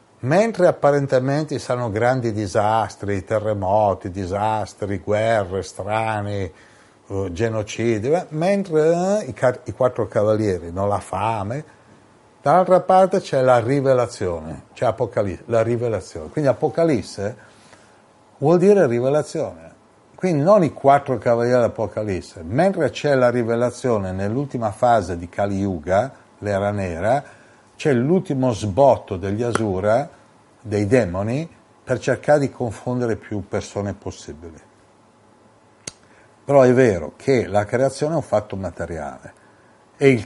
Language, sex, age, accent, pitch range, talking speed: Italian, male, 60-79, native, 105-135 Hz, 115 wpm